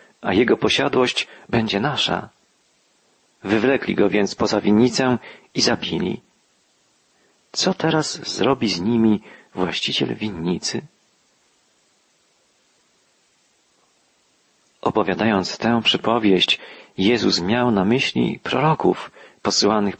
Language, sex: Polish, male